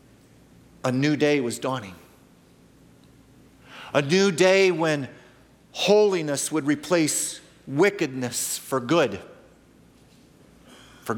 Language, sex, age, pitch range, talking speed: English, male, 50-69, 155-205 Hz, 85 wpm